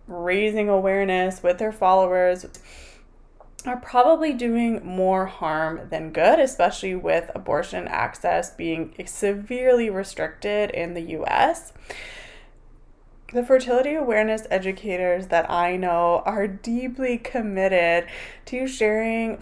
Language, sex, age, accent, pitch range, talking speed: English, female, 20-39, American, 180-225 Hz, 105 wpm